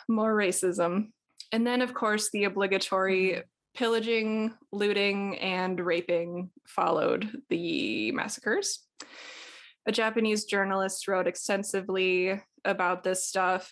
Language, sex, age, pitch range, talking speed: English, female, 20-39, 185-225 Hz, 100 wpm